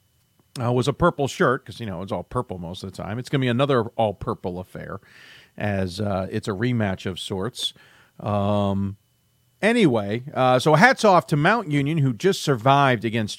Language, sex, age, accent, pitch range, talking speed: English, male, 40-59, American, 105-170 Hz, 190 wpm